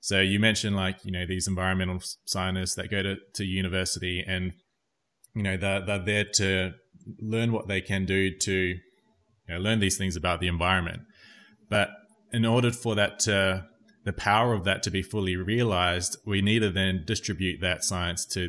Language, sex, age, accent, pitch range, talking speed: English, male, 20-39, Australian, 90-105 Hz, 185 wpm